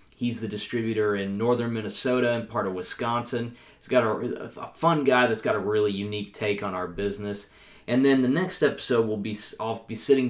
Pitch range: 105-120 Hz